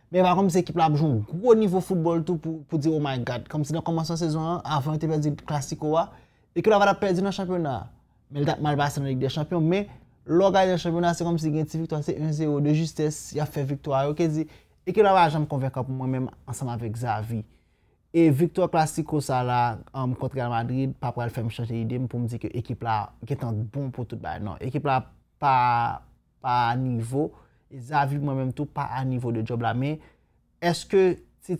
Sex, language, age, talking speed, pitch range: male, French, 30-49, 220 wpm, 120-155 Hz